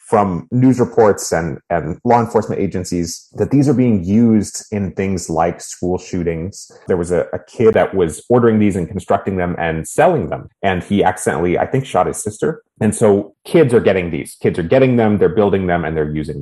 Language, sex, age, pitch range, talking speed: English, male, 30-49, 90-115 Hz, 210 wpm